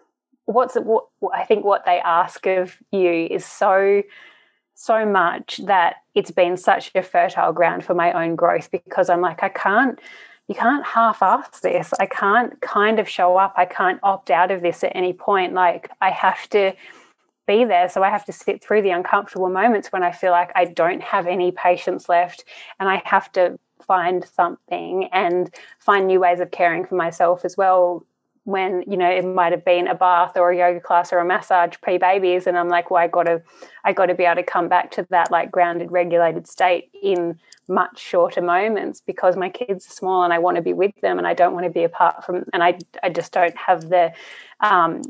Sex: female